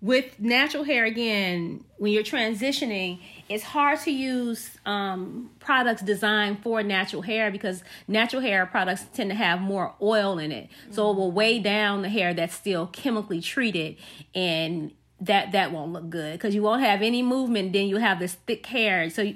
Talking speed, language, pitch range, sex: 180 wpm, English, 190-240 Hz, female